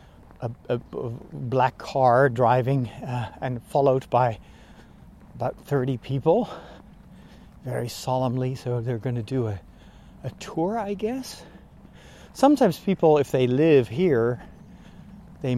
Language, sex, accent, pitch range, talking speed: English, male, American, 105-140 Hz, 115 wpm